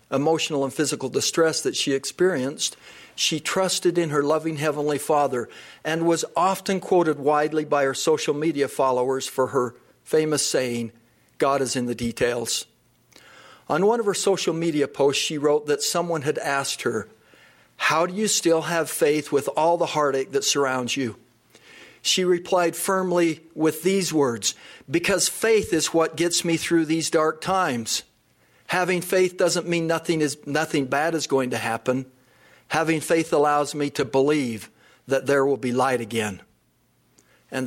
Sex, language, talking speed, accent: male, English, 160 wpm, American